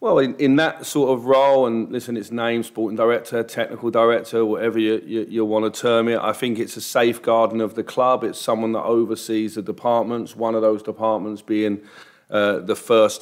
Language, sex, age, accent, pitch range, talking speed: English, male, 40-59, British, 110-115 Hz, 205 wpm